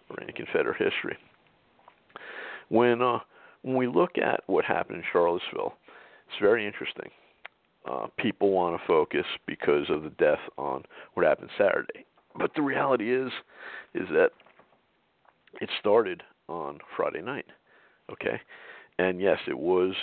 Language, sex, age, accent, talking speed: English, male, 50-69, American, 135 wpm